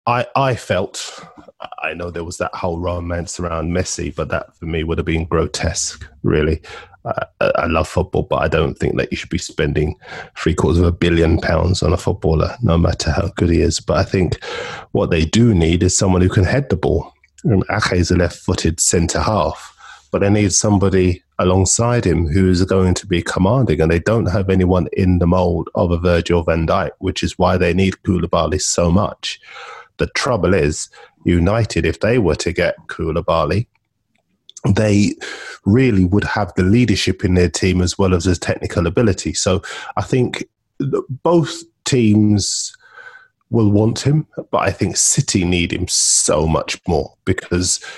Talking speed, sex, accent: 180 wpm, male, British